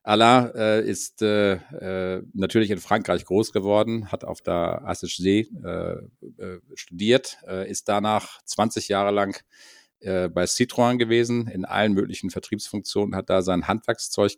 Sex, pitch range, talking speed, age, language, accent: male, 90-105 Hz, 145 wpm, 50-69, German, German